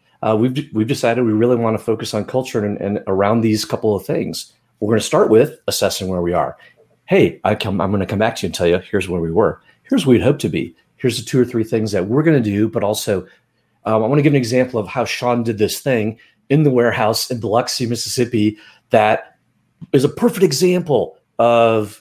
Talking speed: 235 wpm